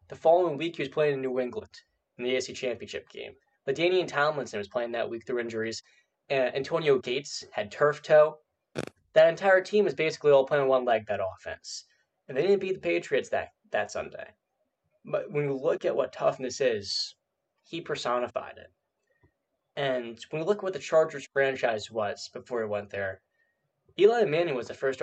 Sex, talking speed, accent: male, 190 wpm, American